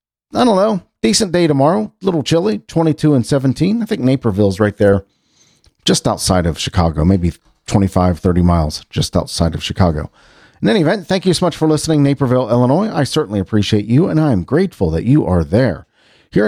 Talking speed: 190 wpm